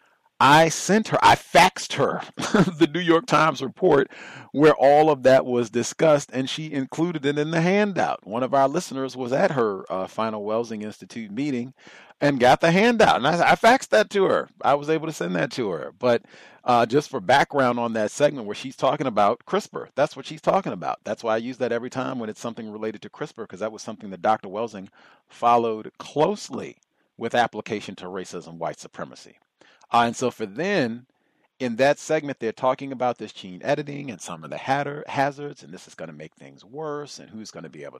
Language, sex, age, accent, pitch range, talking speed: English, male, 40-59, American, 115-155 Hz, 210 wpm